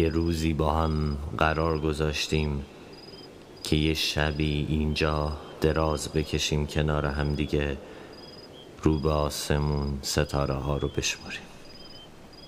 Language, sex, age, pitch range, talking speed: Persian, male, 30-49, 75-85 Hz, 90 wpm